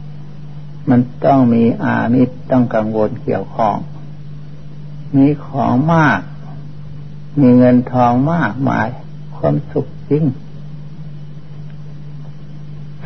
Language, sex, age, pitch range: Thai, male, 60-79, 135-150 Hz